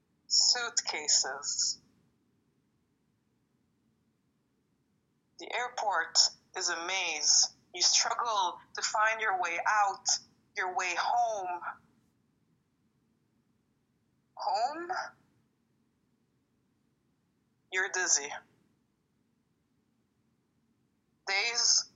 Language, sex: English, female